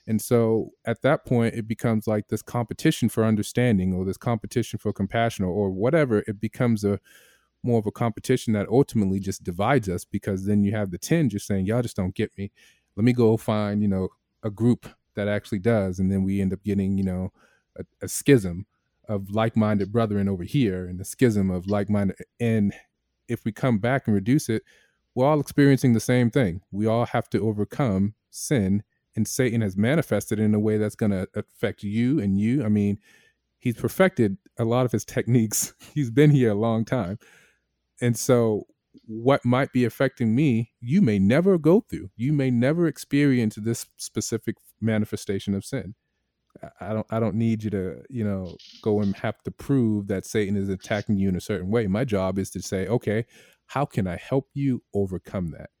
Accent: American